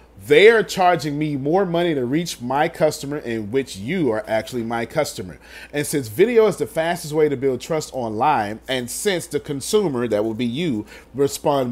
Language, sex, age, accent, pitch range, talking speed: English, male, 30-49, American, 120-180 Hz, 185 wpm